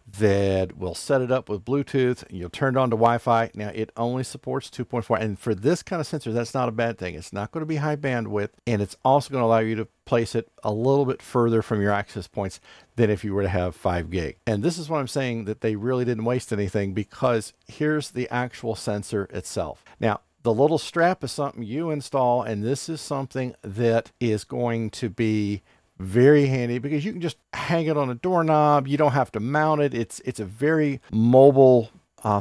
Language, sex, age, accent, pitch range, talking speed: English, male, 50-69, American, 105-140 Hz, 225 wpm